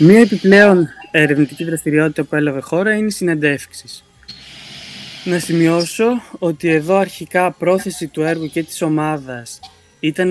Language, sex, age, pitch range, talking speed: Greek, male, 20-39, 135-180 Hz, 120 wpm